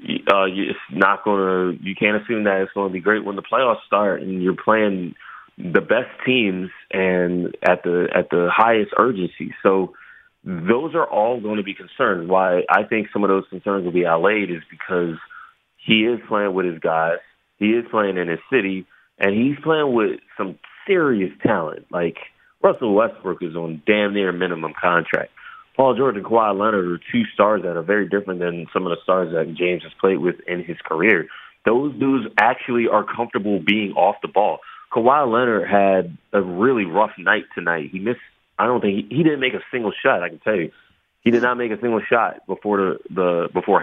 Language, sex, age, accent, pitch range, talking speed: English, male, 30-49, American, 90-110 Hz, 195 wpm